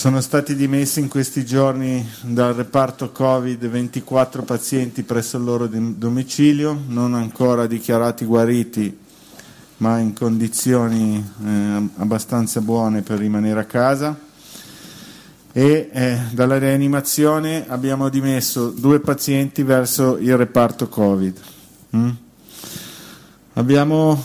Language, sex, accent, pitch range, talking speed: Italian, male, native, 115-135 Hz, 105 wpm